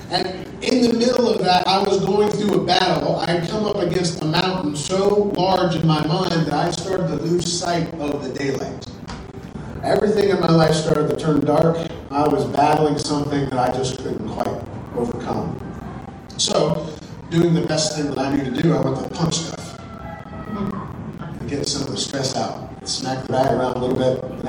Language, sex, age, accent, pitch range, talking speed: English, male, 40-59, American, 145-185 Hz, 195 wpm